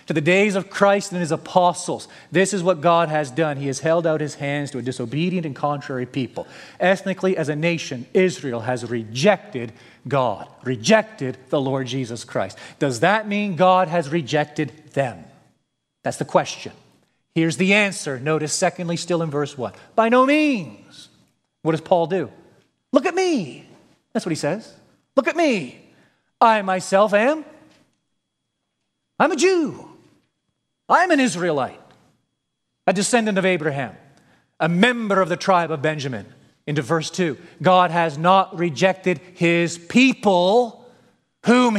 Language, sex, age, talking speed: English, male, 40-59, 150 wpm